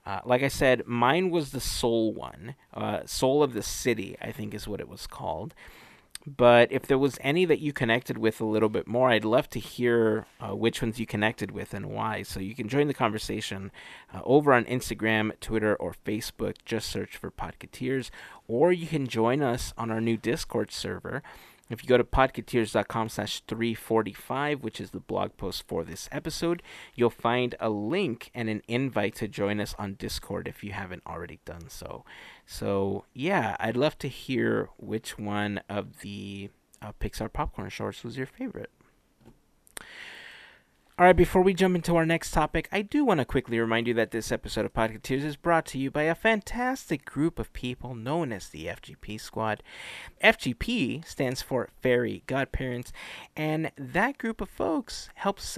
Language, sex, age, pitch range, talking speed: English, male, 30-49, 110-145 Hz, 180 wpm